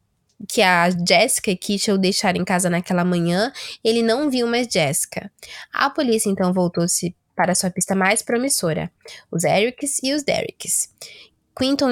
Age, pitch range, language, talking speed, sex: 10-29, 185-240 Hz, Portuguese, 155 wpm, female